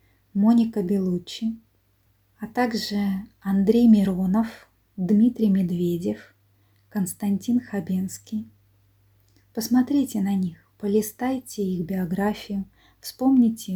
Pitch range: 195-230 Hz